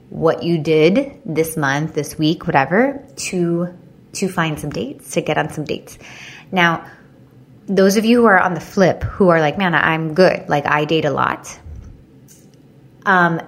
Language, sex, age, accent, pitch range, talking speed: English, female, 20-39, American, 155-185 Hz, 175 wpm